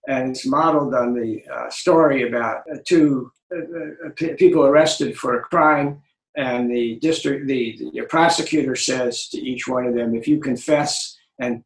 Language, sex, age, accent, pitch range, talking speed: English, male, 60-79, American, 125-155 Hz, 175 wpm